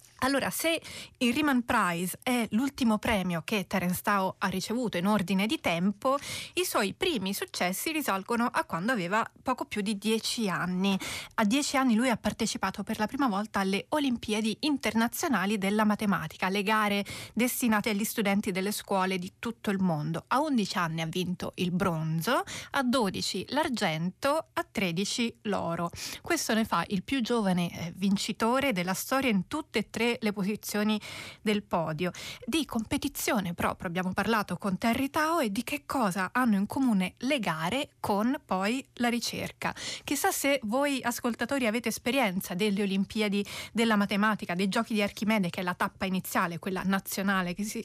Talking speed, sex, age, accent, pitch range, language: 165 wpm, female, 30-49, native, 195-240 Hz, Italian